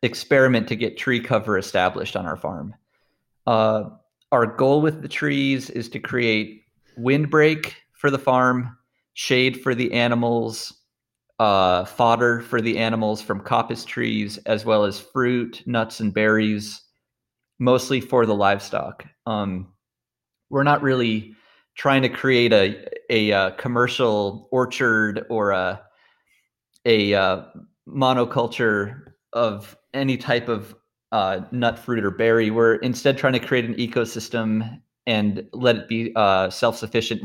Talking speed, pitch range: 135 wpm, 110-125 Hz